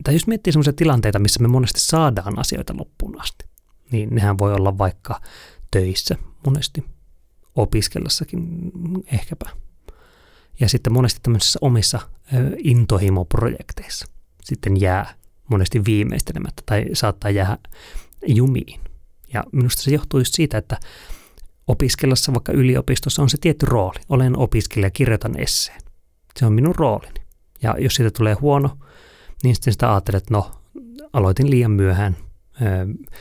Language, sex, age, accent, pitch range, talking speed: Finnish, male, 30-49, native, 100-135 Hz, 130 wpm